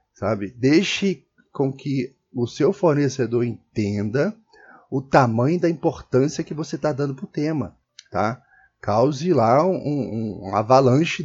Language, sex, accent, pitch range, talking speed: Portuguese, male, Brazilian, 105-145 Hz, 130 wpm